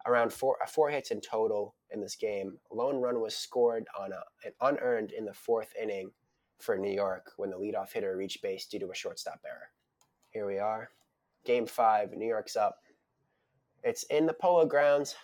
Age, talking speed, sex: 20-39, 190 wpm, male